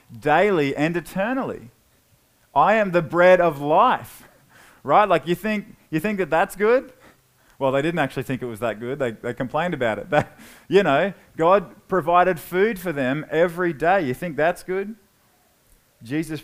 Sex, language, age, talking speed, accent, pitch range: male, English, 20-39, 170 wpm, Australian, 130-175 Hz